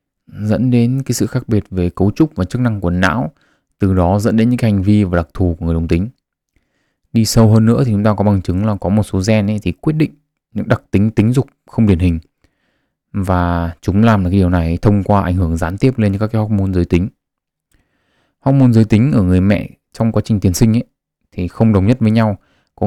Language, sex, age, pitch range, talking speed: Vietnamese, male, 20-39, 95-110 Hz, 245 wpm